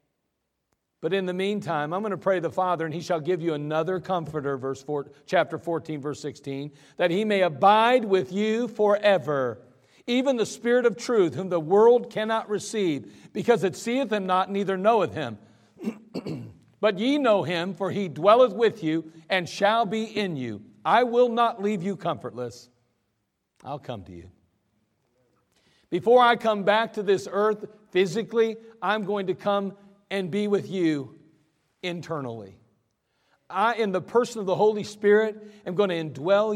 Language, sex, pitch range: English, male, 165-220 Hz